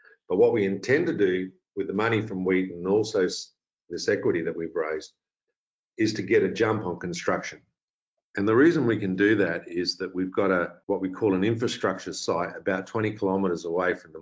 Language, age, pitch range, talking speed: English, 50-69, 90-100 Hz, 205 wpm